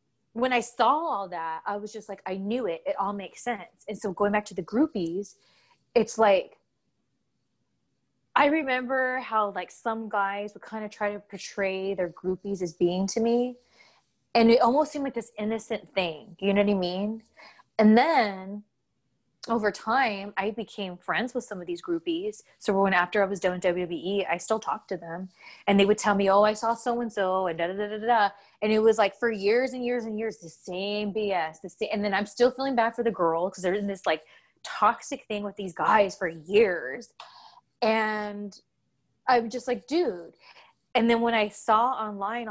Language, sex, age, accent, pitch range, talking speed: English, female, 20-39, American, 190-235 Hz, 200 wpm